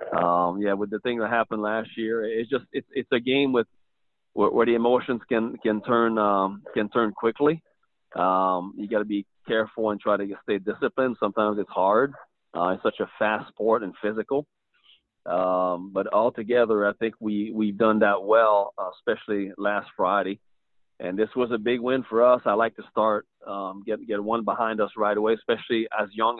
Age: 40-59